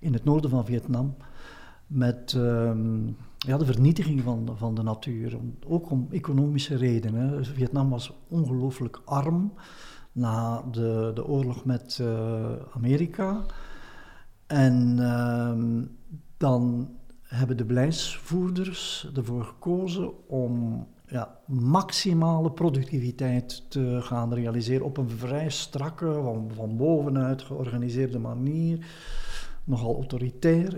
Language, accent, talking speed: Dutch, Dutch, 110 wpm